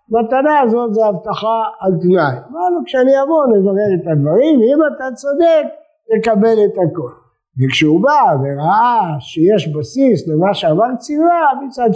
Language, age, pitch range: English, 50-69, 150-220 Hz